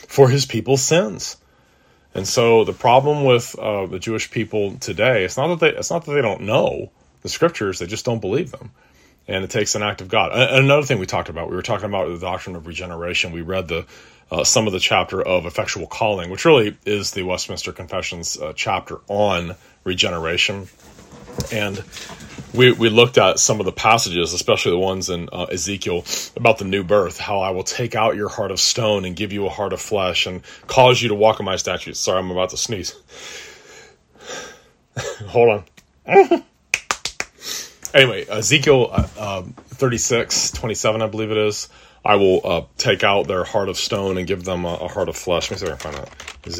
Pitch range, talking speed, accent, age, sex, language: 90-115 Hz, 205 wpm, American, 30-49, male, English